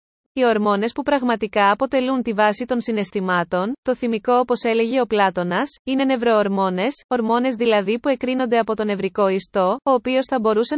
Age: 20-39